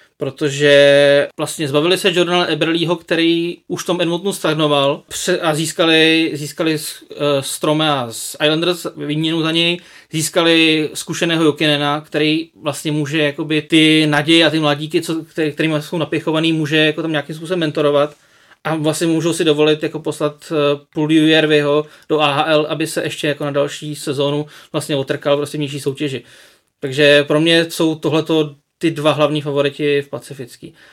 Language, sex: Czech, male